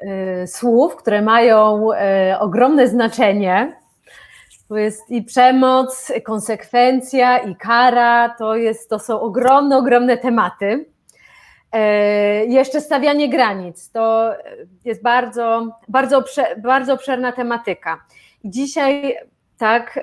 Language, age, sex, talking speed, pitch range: Polish, 30-49, female, 95 wpm, 210-250 Hz